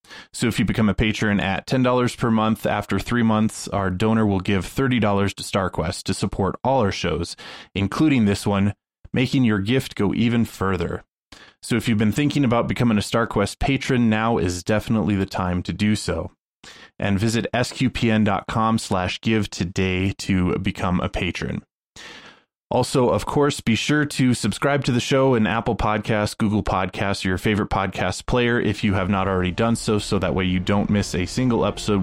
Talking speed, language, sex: 185 wpm, English, male